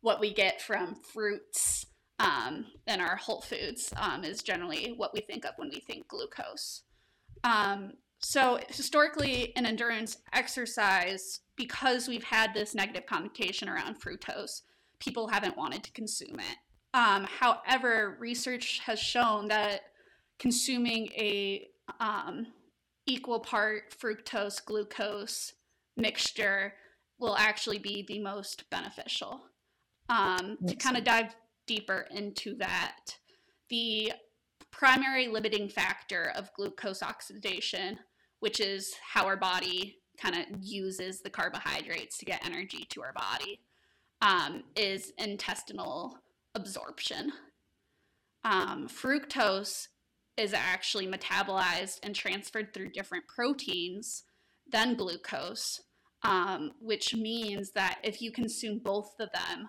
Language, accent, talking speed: English, American, 120 wpm